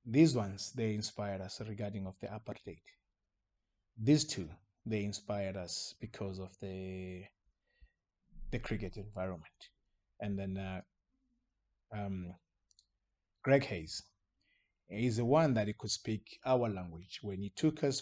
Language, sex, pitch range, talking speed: English, male, 95-115 Hz, 130 wpm